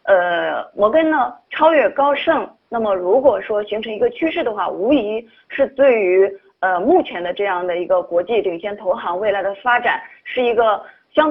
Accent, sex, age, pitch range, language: native, female, 20-39, 190-270 Hz, Chinese